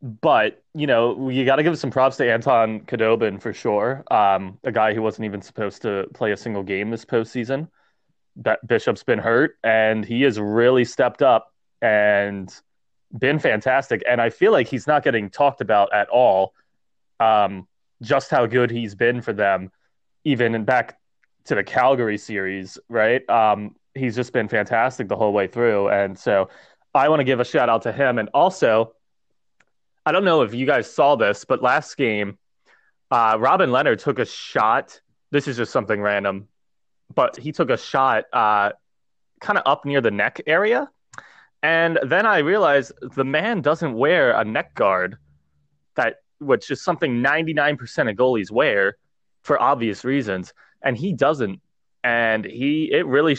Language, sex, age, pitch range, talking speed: English, male, 20-39, 105-135 Hz, 175 wpm